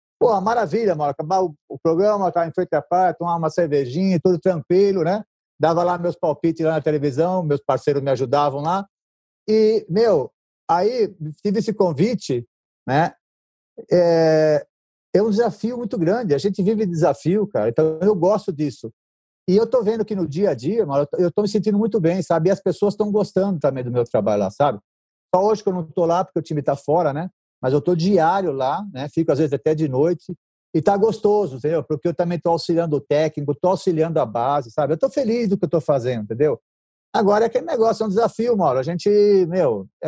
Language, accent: Portuguese, Brazilian